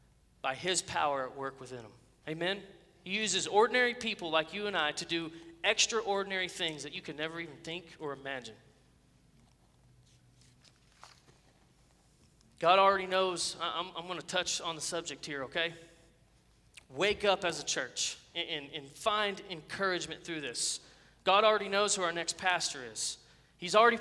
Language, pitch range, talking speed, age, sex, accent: English, 165-215 Hz, 155 wpm, 30-49, male, American